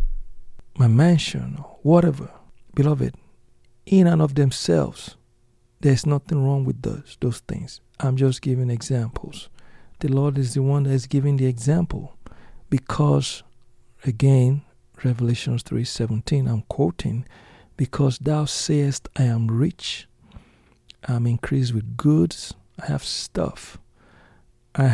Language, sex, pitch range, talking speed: English, male, 120-145 Hz, 120 wpm